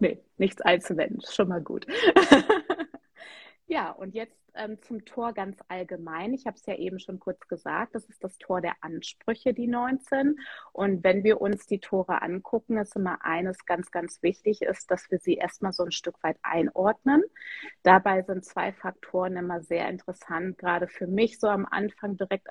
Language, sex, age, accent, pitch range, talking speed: German, female, 30-49, German, 180-230 Hz, 180 wpm